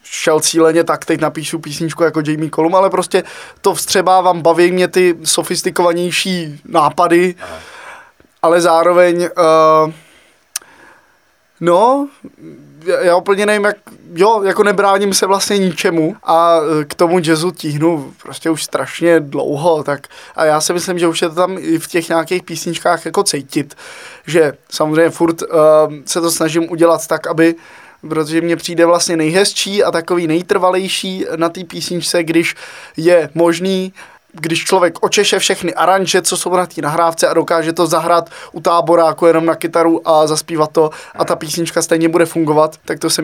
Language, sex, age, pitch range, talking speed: Czech, male, 20-39, 160-180 Hz, 160 wpm